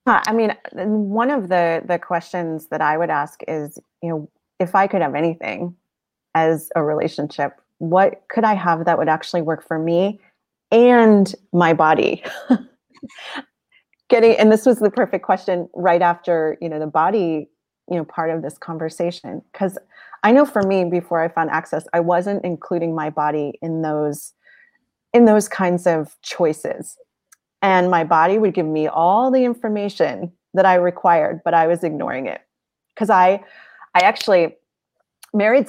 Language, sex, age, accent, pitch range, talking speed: English, female, 30-49, American, 165-215 Hz, 165 wpm